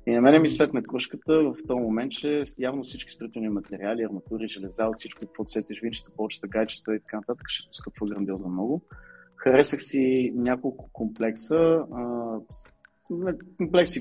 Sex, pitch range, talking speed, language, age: male, 110-140 Hz, 140 wpm, Bulgarian, 20-39